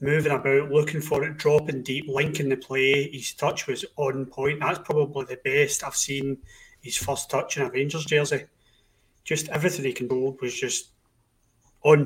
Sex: male